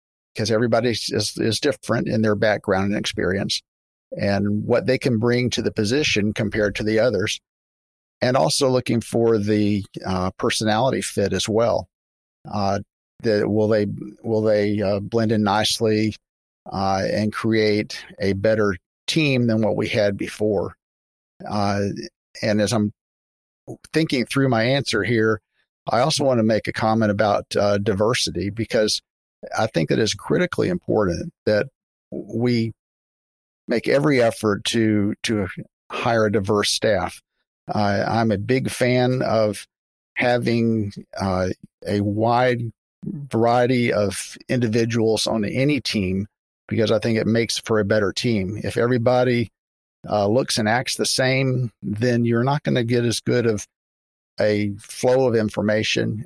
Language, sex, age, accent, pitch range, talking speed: English, male, 50-69, American, 100-115 Hz, 145 wpm